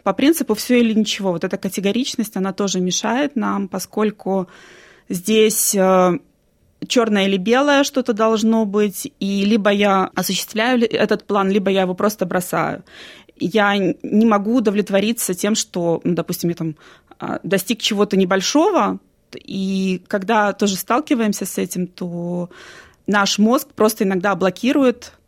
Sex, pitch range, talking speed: female, 190-225 Hz, 135 wpm